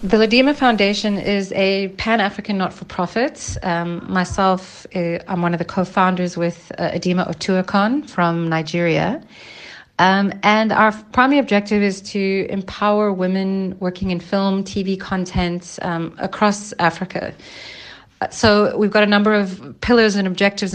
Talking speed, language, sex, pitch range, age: 135 wpm, English, female, 170-195 Hz, 40-59